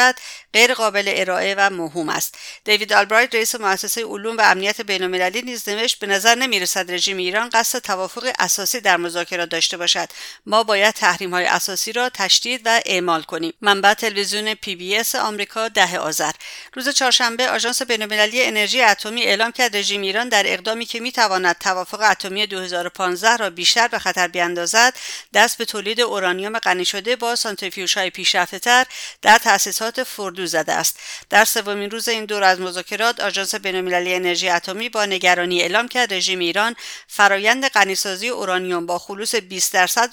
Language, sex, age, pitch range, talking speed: English, female, 50-69, 185-230 Hz, 165 wpm